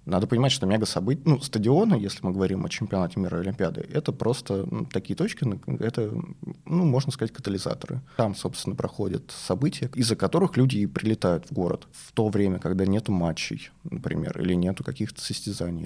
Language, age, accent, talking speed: Russian, 20-39, native, 175 wpm